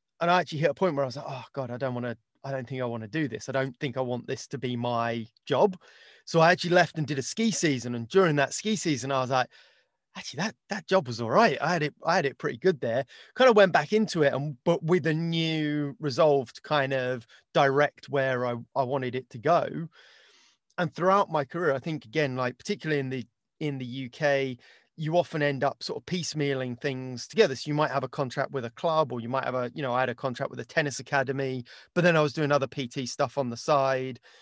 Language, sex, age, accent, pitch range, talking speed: English, male, 30-49, British, 130-160 Hz, 255 wpm